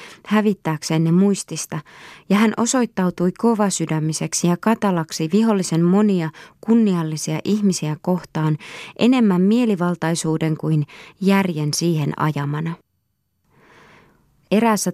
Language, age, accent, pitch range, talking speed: Finnish, 20-39, native, 155-200 Hz, 85 wpm